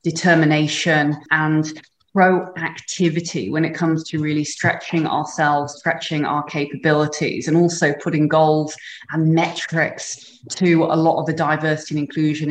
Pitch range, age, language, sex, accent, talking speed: 155-175 Hz, 30-49, English, female, British, 130 wpm